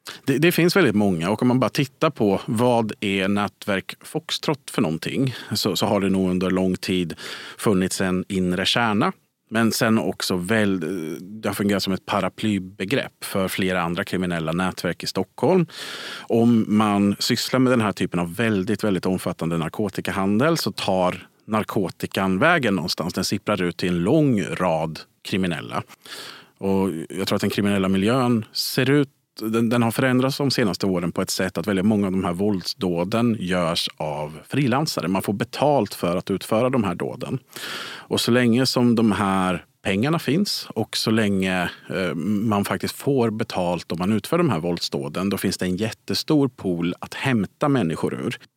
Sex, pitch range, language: male, 90-115 Hz, Swedish